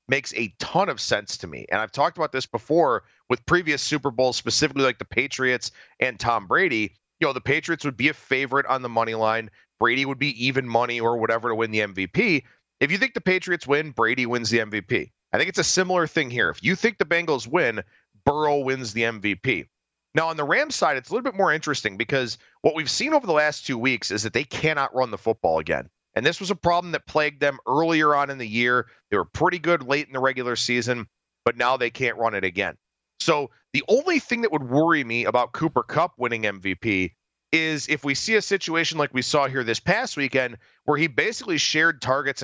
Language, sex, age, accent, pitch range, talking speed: English, male, 30-49, American, 115-155 Hz, 230 wpm